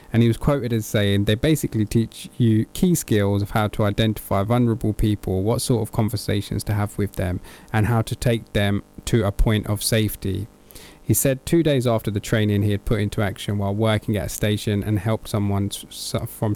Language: English